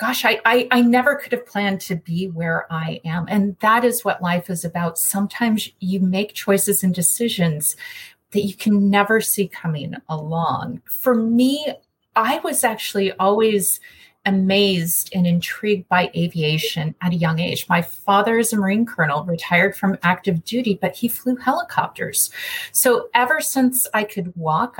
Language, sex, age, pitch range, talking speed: English, female, 30-49, 175-235 Hz, 165 wpm